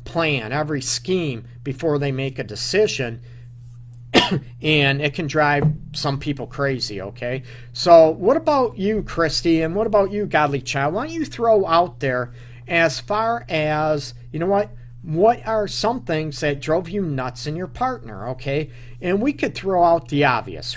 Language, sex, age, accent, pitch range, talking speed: English, male, 50-69, American, 120-160 Hz, 170 wpm